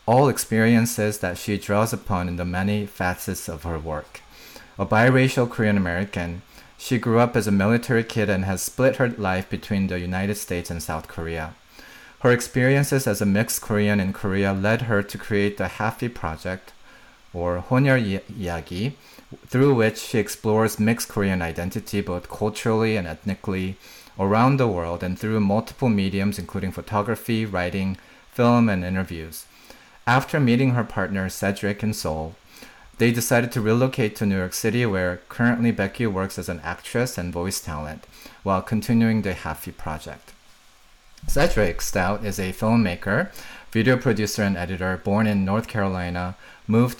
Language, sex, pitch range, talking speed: English, male, 95-115 Hz, 155 wpm